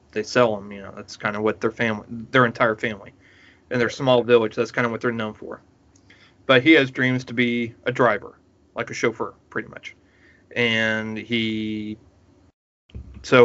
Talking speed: 185 wpm